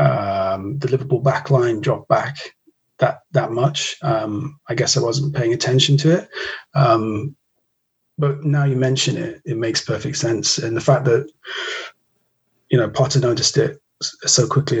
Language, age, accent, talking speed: English, 30-49, British, 160 wpm